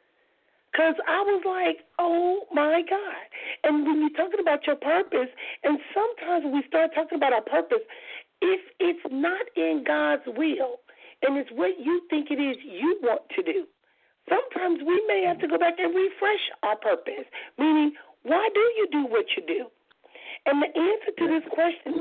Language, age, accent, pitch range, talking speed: English, 50-69, American, 300-390 Hz, 175 wpm